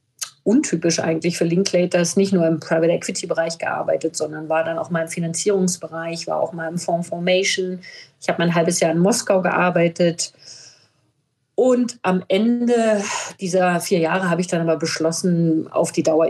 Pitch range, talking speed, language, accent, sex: 160-185 Hz, 160 wpm, German, German, female